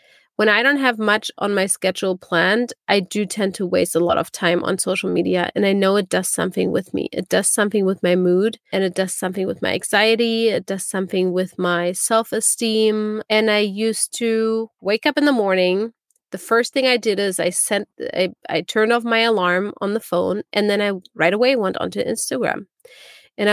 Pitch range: 190-225 Hz